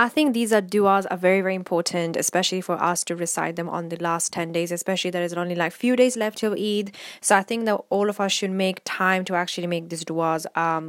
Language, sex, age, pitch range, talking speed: English, female, 10-29, 170-195 Hz, 255 wpm